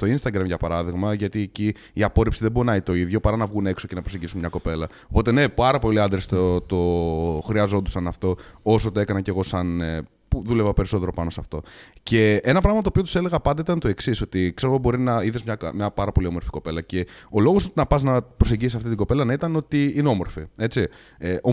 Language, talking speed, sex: Greek, 235 wpm, male